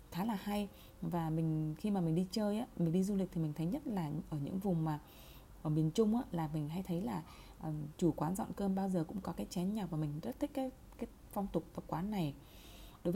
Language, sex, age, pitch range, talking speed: Vietnamese, female, 20-39, 160-205 Hz, 260 wpm